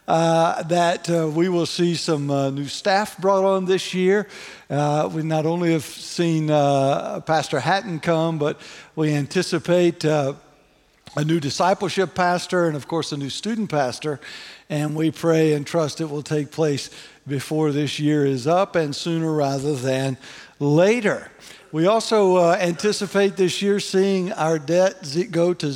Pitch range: 150-190 Hz